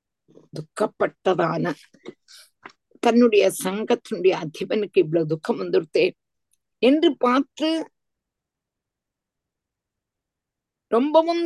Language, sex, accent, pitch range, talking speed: Tamil, female, native, 215-295 Hz, 50 wpm